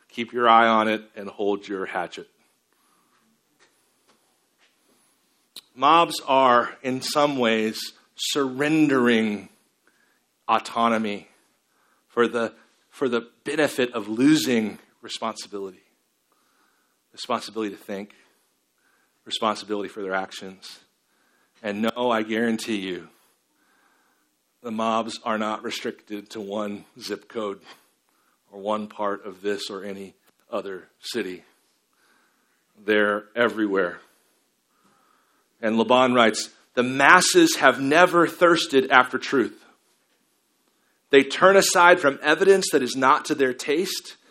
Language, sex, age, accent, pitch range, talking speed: English, male, 50-69, American, 105-140 Hz, 105 wpm